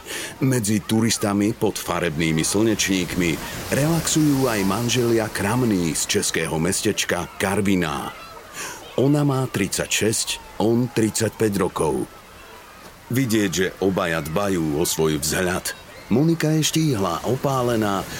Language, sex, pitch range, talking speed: Slovak, male, 95-120 Hz, 100 wpm